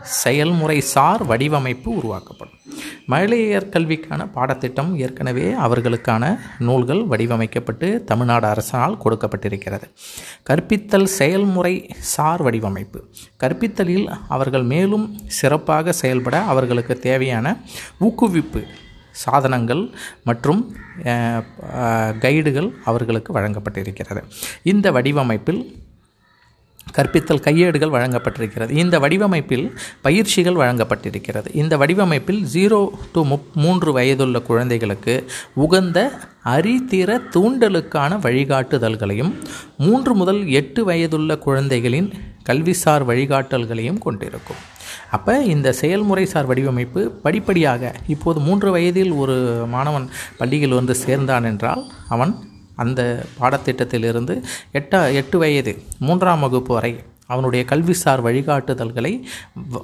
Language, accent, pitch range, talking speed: Tamil, native, 120-175 Hz, 85 wpm